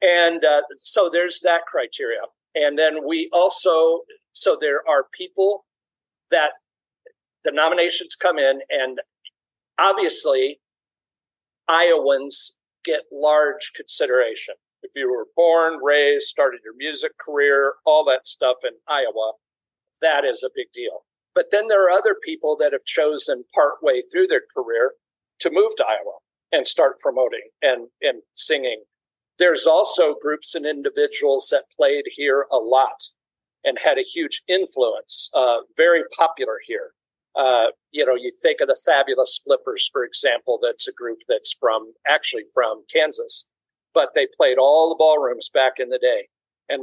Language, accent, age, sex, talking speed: English, American, 50-69, male, 150 wpm